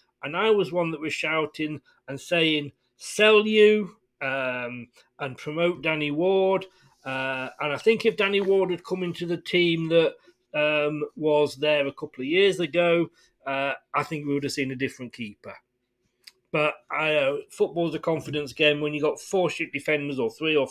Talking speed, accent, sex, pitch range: 185 wpm, British, male, 145-180 Hz